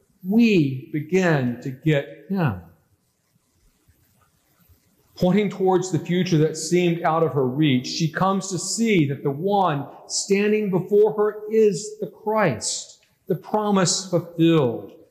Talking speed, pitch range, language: 125 wpm, 145-195 Hz, English